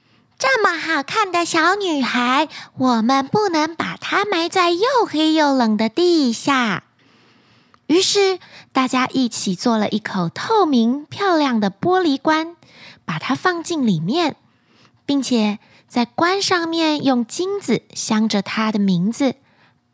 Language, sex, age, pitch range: Chinese, female, 20-39, 215-330 Hz